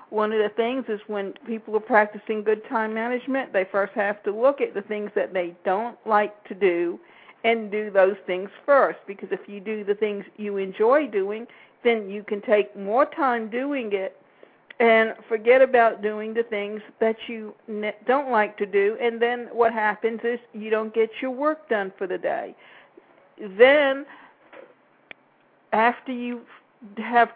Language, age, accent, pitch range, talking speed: English, 50-69, American, 200-235 Hz, 170 wpm